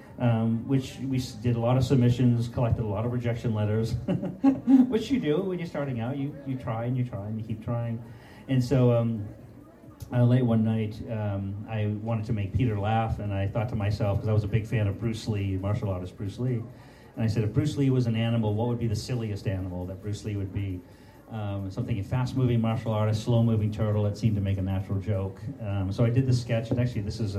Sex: male